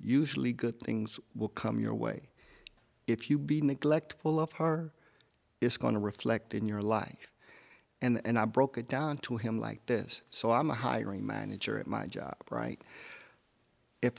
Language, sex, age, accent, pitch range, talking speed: English, male, 50-69, American, 115-135 Hz, 170 wpm